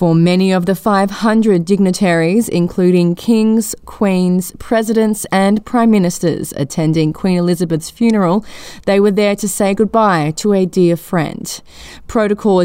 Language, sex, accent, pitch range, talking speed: English, female, Australian, 170-210 Hz, 135 wpm